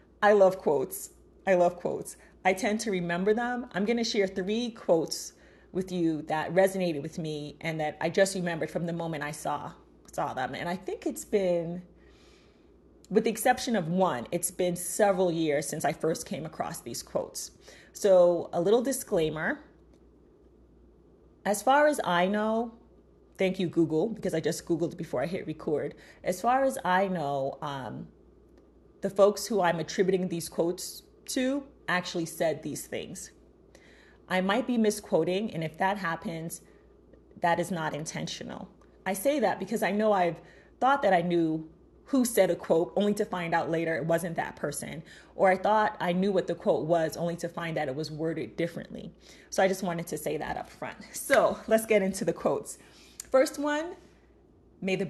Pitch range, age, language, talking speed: 165-210 Hz, 30-49, English, 180 wpm